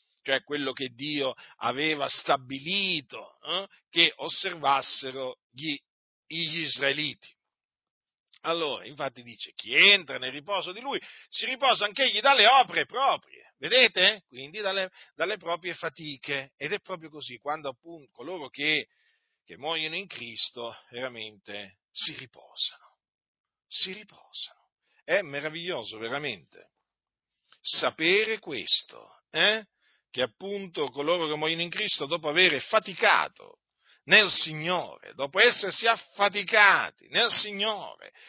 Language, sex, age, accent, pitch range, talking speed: Italian, male, 50-69, native, 140-205 Hz, 115 wpm